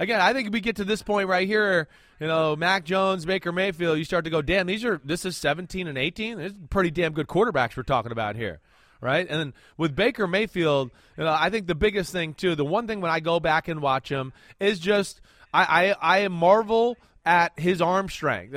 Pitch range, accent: 160-205 Hz, American